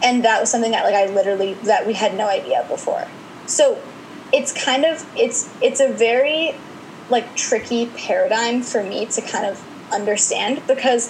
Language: English